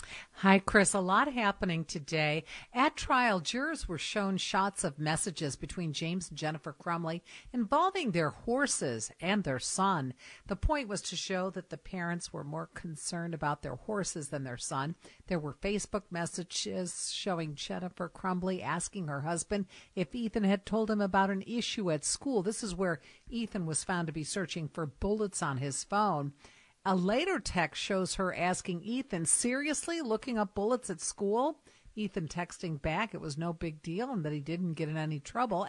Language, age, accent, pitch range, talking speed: English, 50-69, American, 155-205 Hz, 175 wpm